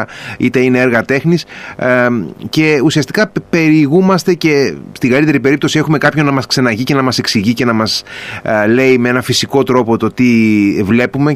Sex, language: male, Greek